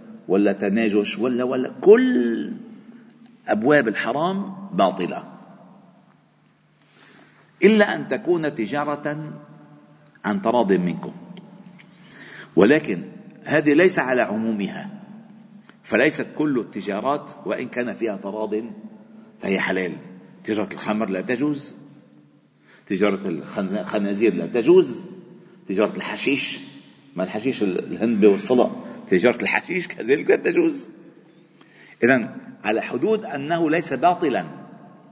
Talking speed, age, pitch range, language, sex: 90 wpm, 50-69, 145-215 Hz, Arabic, male